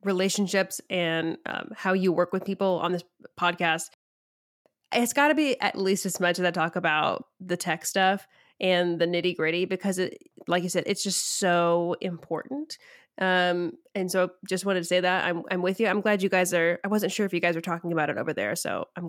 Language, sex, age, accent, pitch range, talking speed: English, female, 20-39, American, 175-205 Hz, 215 wpm